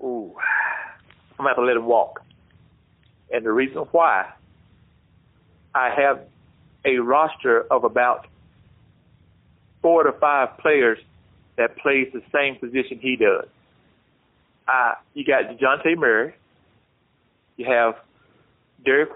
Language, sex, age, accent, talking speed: English, male, 40-59, American, 115 wpm